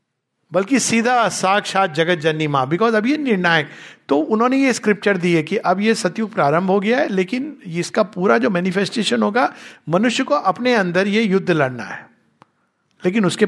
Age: 50-69